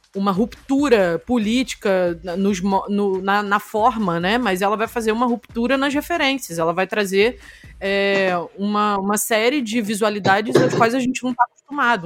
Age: 20-39